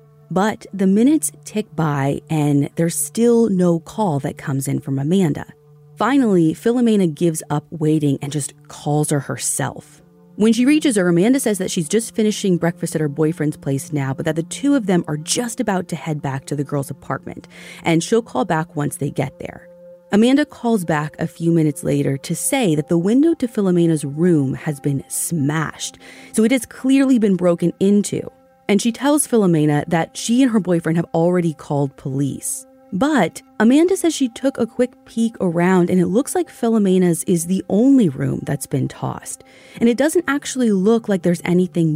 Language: English